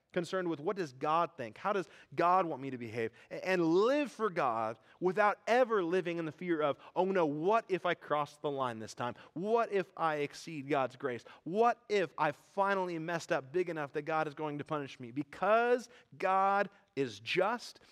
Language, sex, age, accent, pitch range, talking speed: English, male, 30-49, American, 125-185 Hz, 200 wpm